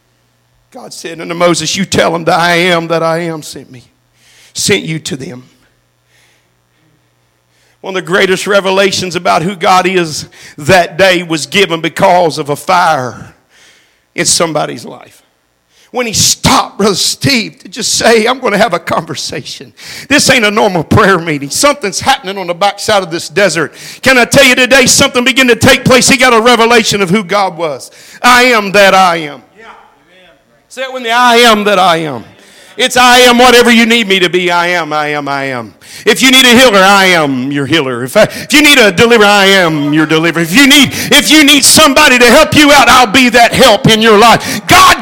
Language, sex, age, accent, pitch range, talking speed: English, male, 50-69, American, 160-250 Hz, 205 wpm